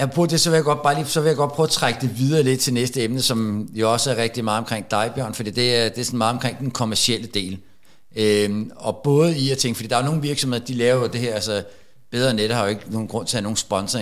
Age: 60-79